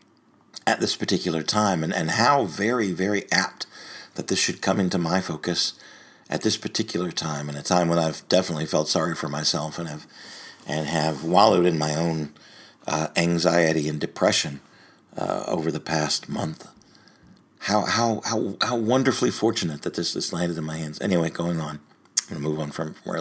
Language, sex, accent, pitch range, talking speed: English, male, American, 80-95 Hz, 185 wpm